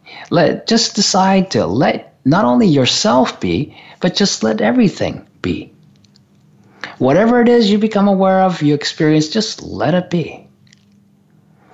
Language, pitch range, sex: English, 150-215 Hz, male